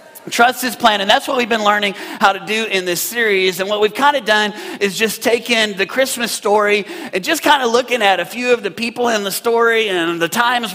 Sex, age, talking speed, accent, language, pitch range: male, 30-49, 245 wpm, American, English, 190-225 Hz